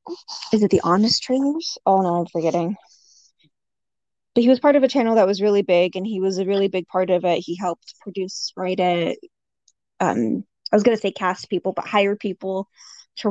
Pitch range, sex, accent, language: 185-215 Hz, female, American, English